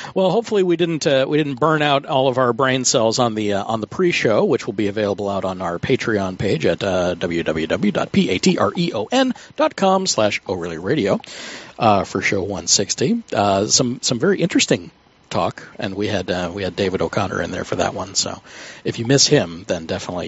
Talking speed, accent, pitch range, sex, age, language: 200 wpm, American, 115-185 Hz, male, 50-69, English